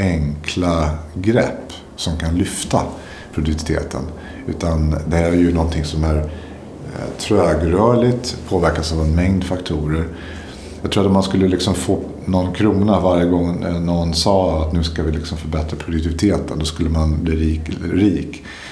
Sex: male